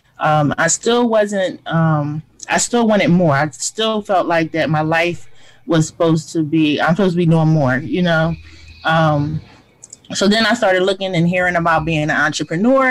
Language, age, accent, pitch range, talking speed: English, 20-39, American, 145-180 Hz, 185 wpm